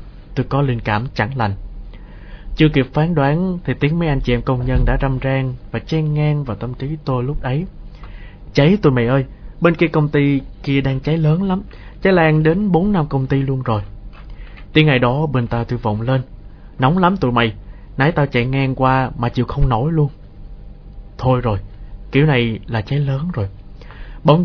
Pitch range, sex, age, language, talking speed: 115-150 Hz, male, 20-39, Vietnamese, 205 wpm